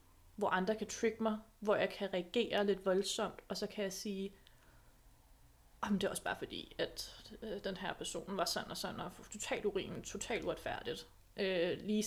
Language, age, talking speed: Danish, 30-49, 180 wpm